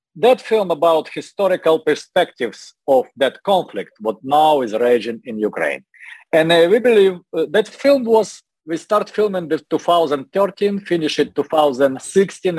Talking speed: 145 wpm